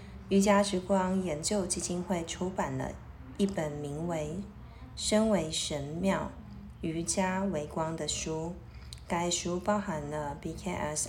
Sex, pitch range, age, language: female, 155-195 Hz, 20-39, Chinese